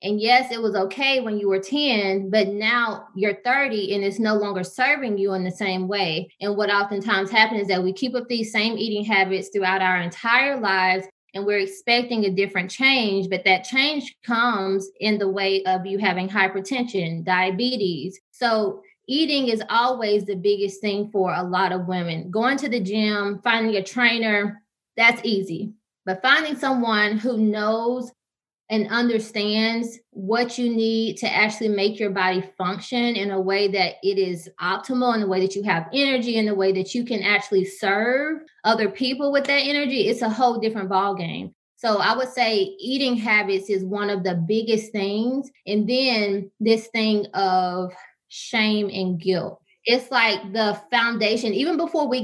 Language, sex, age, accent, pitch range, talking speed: English, female, 20-39, American, 195-240 Hz, 175 wpm